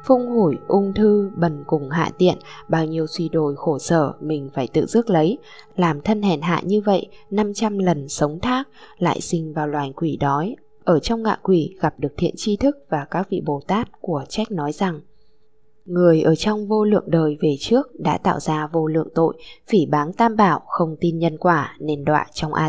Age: 10-29